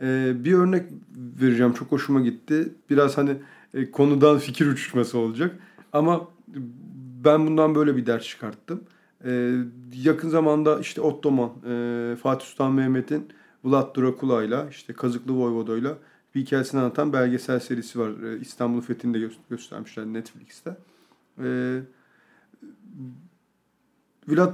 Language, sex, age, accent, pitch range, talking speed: Turkish, male, 40-59, native, 125-160 Hz, 100 wpm